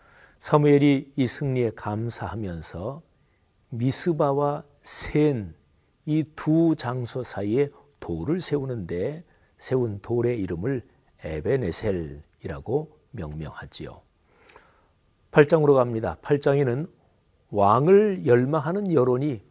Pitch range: 110-150 Hz